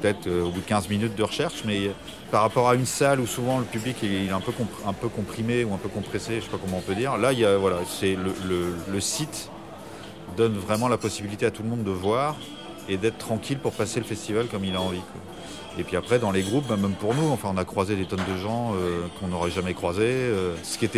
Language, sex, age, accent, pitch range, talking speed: French, male, 30-49, French, 100-120 Hz, 285 wpm